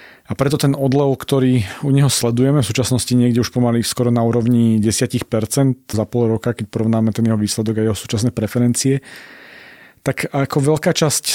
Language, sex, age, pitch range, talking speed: Slovak, male, 40-59, 115-135 Hz, 175 wpm